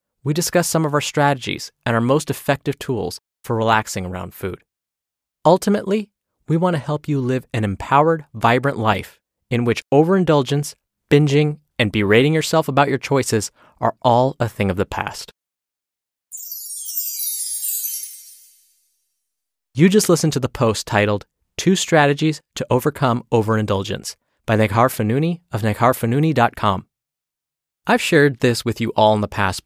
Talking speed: 140 wpm